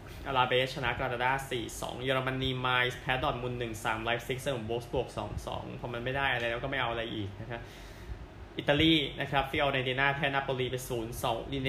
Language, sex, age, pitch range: Thai, male, 20-39, 115-140 Hz